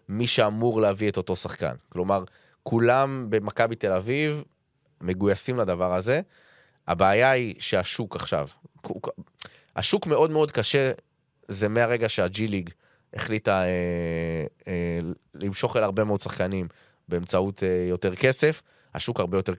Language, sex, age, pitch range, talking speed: Hebrew, male, 20-39, 95-120 Hz, 130 wpm